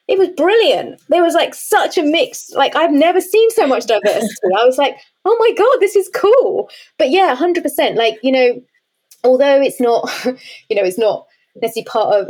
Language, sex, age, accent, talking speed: English, female, 20-39, British, 200 wpm